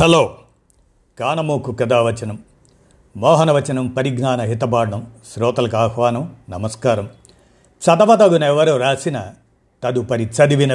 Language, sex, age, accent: Telugu, male, 50-69, native